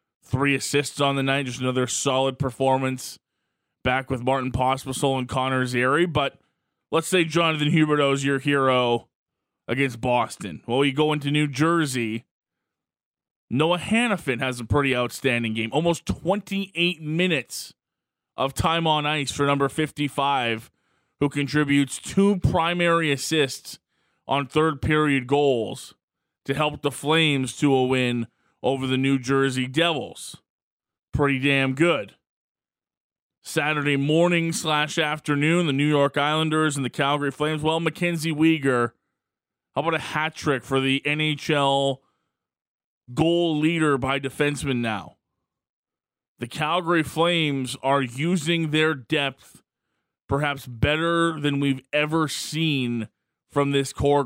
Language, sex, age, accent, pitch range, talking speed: English, male, 20-39, American, 130-155 Hz, 130 wpm